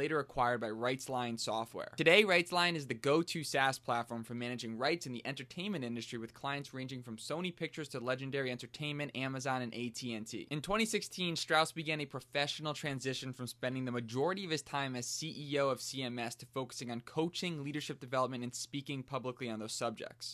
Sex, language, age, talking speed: male, English, 20-39, 180 wpm